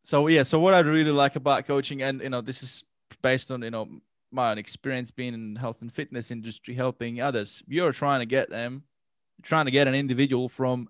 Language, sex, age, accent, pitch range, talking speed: English, male, 20-39, Australian, 120-140 Hz, 225 wpm